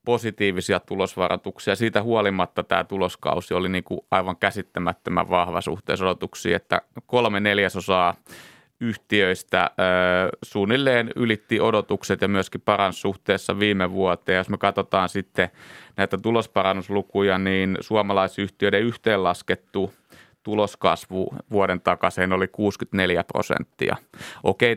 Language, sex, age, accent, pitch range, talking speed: Finnish, male, 30-49, native, 95-110 Hz, 105 wpm